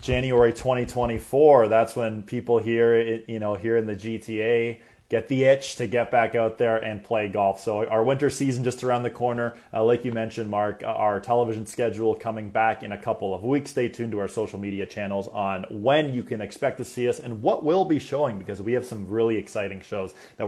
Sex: male